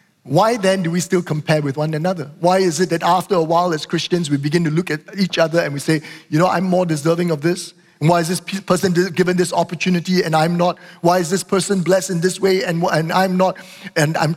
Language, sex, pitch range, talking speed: English, male, 170-205 Hz, 245 wpm